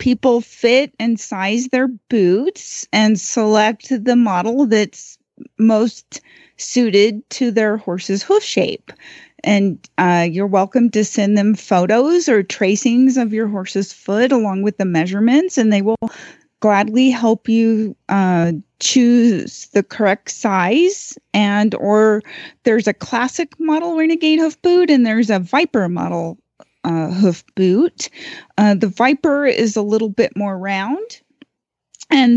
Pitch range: 205-270 Hz